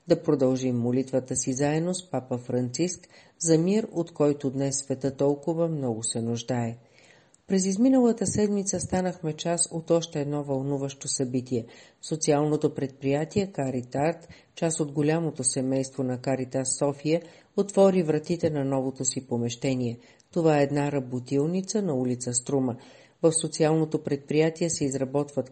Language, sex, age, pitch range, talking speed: Bulgarian, female, 40-59, 130-165 Hz, 130 wpm